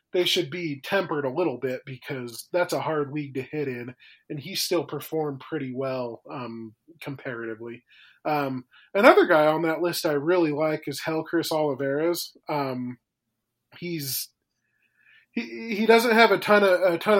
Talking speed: 160 wpm